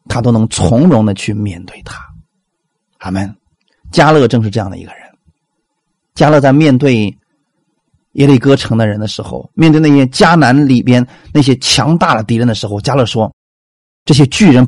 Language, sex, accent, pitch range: Chinese, male, native, 120-195 Hz